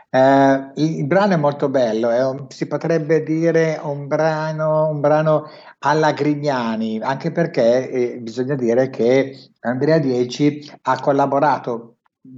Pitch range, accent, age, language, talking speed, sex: 120-155 Hz, native, 60-79, Italian, 135 wpm, male